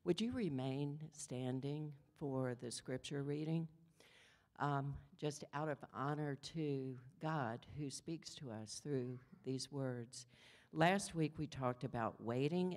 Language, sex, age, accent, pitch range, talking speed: English, female, 60-79, American, 125-155 Hz, 130 wpm